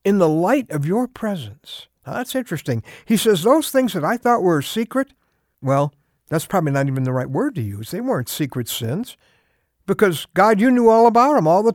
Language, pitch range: English, 145-230 Hz